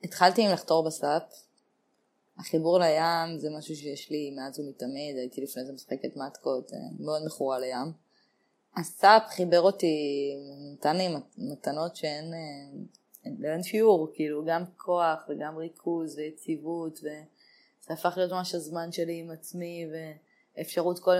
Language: Hebrew